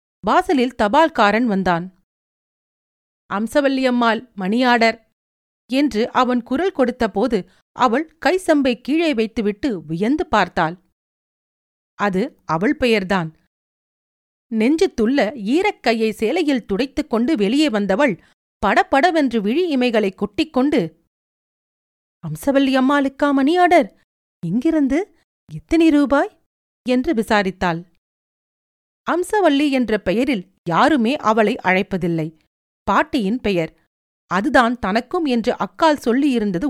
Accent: native